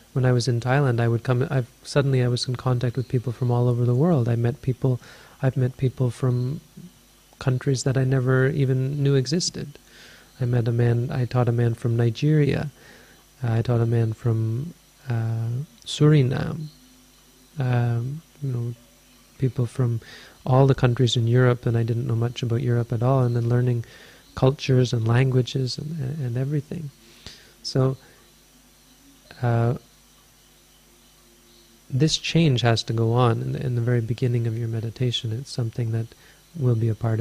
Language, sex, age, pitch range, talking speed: English, male, 30-49, 115-135 Hz, 170 wpm